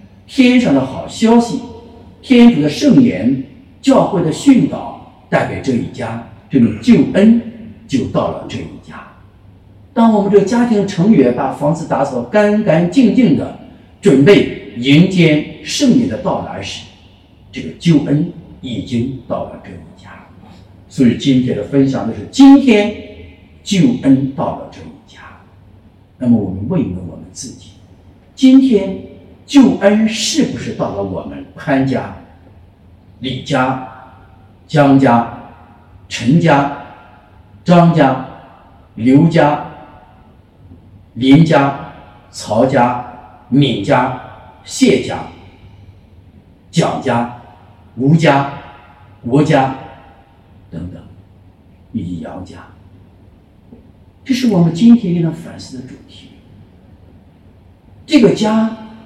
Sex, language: male, English